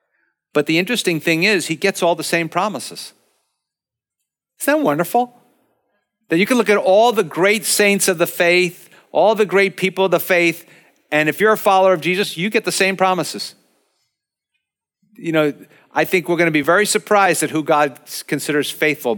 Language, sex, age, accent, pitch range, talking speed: English, male, 50-69, American, 140-190 Hz, 190 wpm